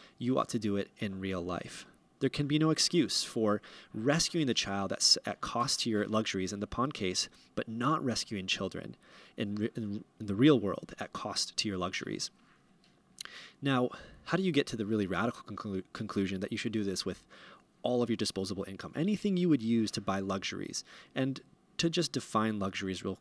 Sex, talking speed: male, 190 wpm